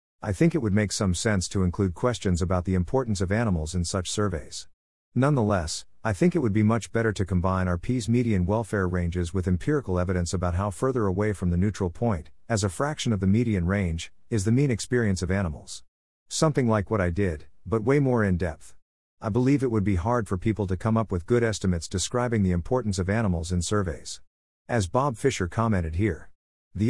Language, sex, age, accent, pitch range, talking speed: English, male, 50-69, American, 90-115 Hz, 205 wpm